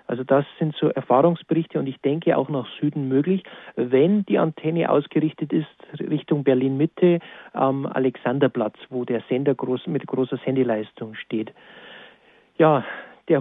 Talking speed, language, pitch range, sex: 145 wpm, German, 135-165 Hz, male